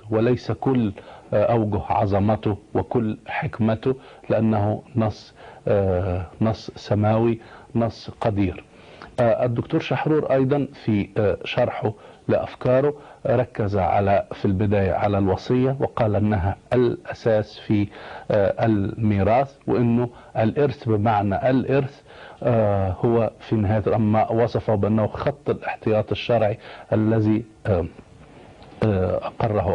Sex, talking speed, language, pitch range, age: male, 90 wpm, Arabic, 100-120 Hz, 50-69